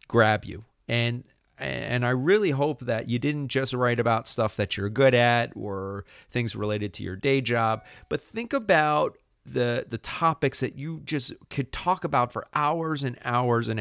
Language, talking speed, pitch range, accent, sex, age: English, 180 wpm, 105-145 Hz, American, male, 40-59